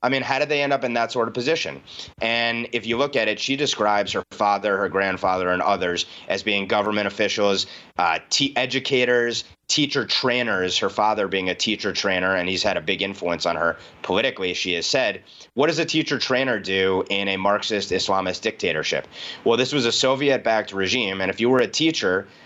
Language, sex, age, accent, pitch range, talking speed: English, male, 30-49, American, 100-130 Hz, 205 wpm